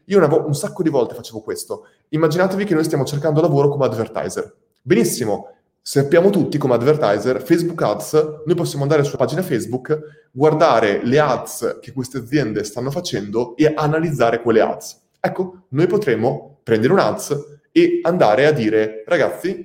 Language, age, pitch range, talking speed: Italian, 20-39, 130-185 Hz, 155 wpm